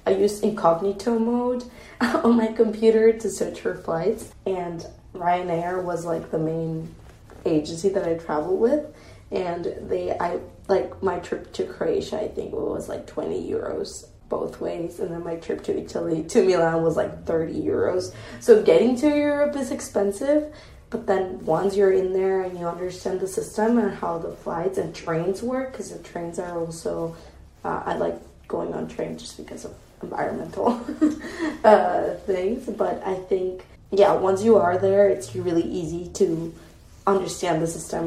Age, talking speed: 20-39, 170 wpm